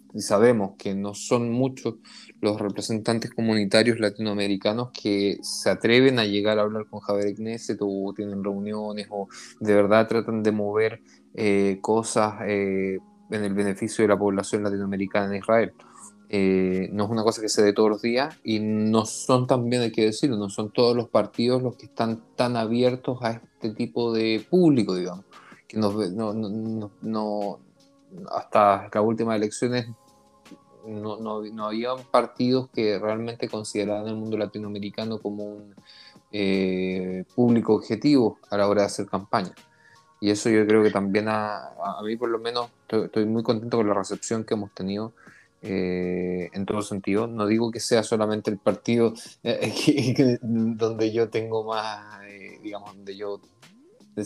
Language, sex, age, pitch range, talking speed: Spanish, male, 20-39, 100-115 Hz, 170 wpm